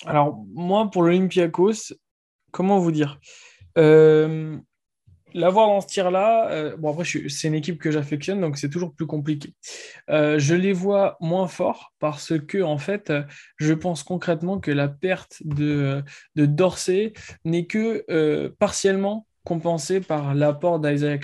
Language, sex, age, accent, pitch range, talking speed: French, male, 20-39, French, 145-180 Hz, 155 wpm